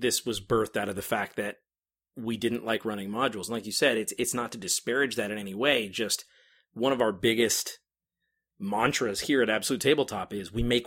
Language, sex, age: English, male, 30-49